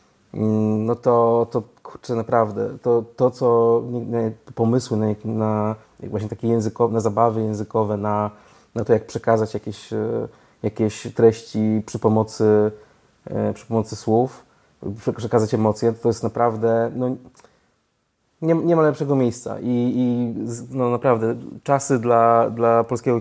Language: Polish